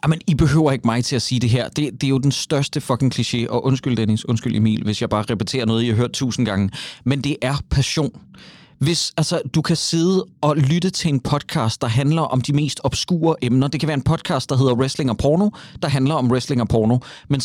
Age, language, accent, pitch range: 30-49, Danish, native, 130-160 Hz